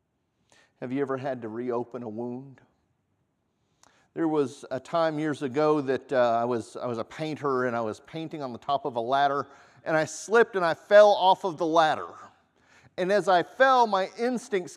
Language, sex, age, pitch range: English, male, 50-69, 135-200 Hz